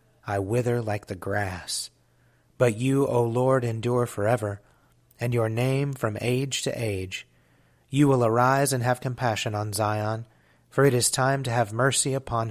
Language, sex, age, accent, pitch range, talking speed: English, male, 30-49, American, 105-130 Hz, 165 wpm